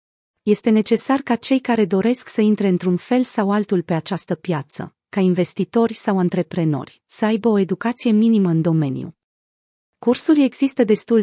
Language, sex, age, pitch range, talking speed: Romanian, female, 30-49, 175-225 Hz, 155 wpm